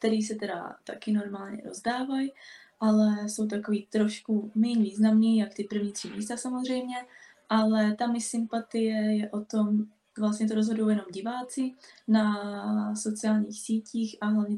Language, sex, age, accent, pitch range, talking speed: Czech, female, 20-39, native, 205-220 Hz, 145 wpm